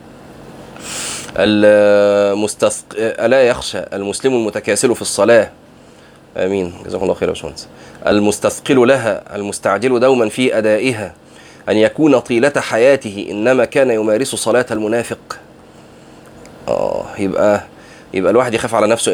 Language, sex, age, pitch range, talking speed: Arabic, male, 30-49, 105-125 Hz, 110 wpm